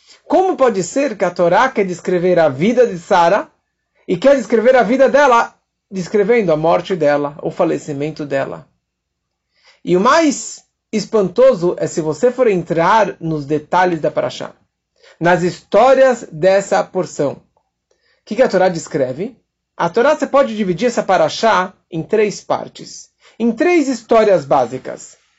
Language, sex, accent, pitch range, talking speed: Portuguese, male, Brazilian, 175-245 Hz, 145 wpm